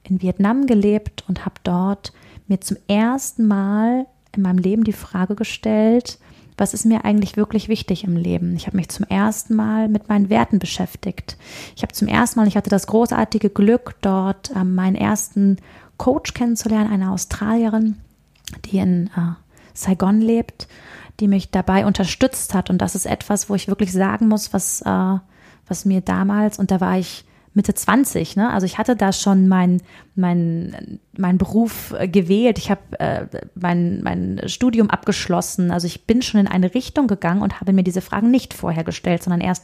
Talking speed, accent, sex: 180 wpm, German, female